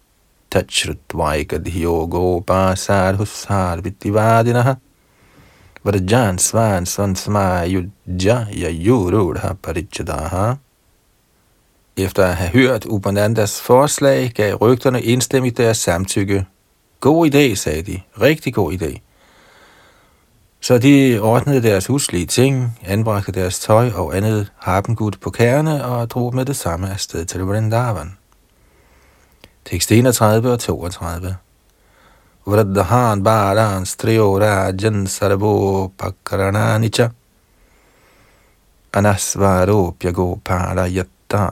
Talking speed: 75 wpm